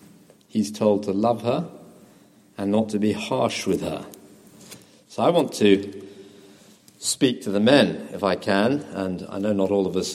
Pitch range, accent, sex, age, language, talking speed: 100-135 Hz, British, male, 50-69, English, 175 wpm